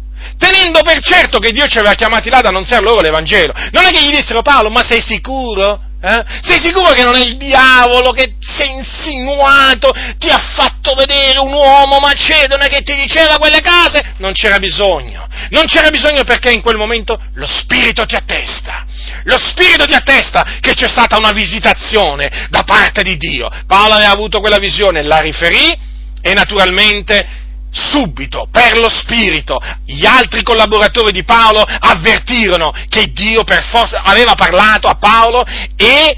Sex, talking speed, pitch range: male, 170 wpm, 215-275 Hz